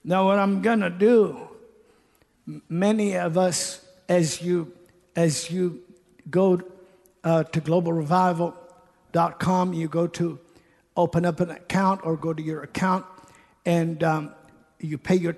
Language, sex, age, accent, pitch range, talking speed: English, male, 50-69, American, 175-195 Hz, 135 wpm